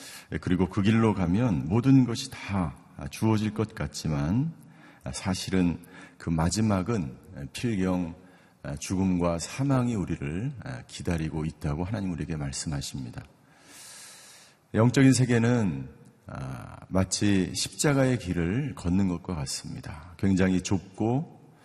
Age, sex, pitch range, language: 50-69, male, 85-120 Hz, Korean